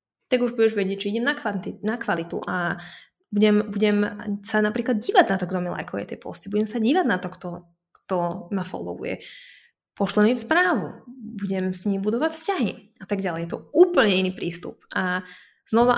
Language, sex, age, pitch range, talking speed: Slovak, female, 20-39, 180-220 Hz, 190 wpm